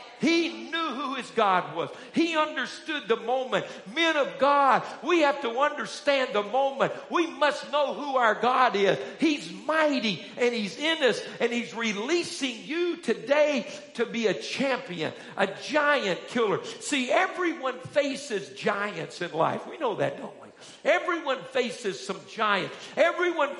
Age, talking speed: 50-69, 155 wpm